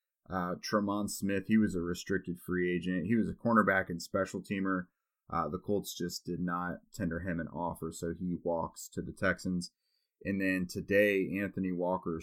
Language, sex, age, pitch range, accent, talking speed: English, male, 30-49, 90-105 Hz, American, 180 wpm